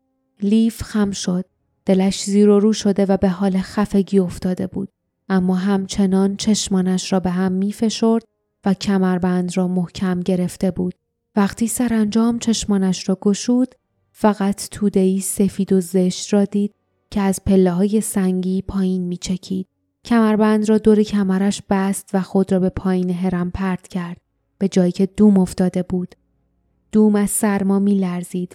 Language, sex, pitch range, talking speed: Persian, female, 190-210 Hz, 150 wpm